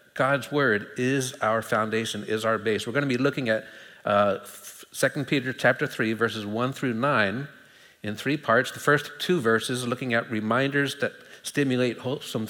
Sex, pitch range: male, 110-140 Hz